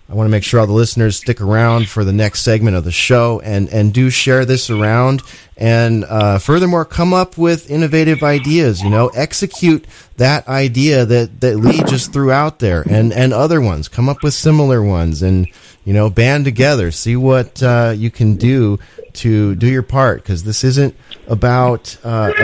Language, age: English, 30-49